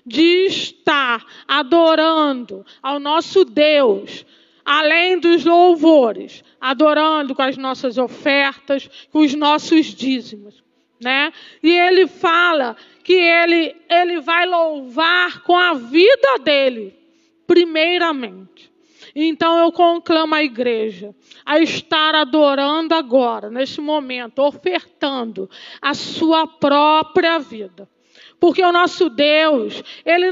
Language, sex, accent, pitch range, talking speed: Portuguese, female, Brazilian, 270-345 Hz, 105 wpm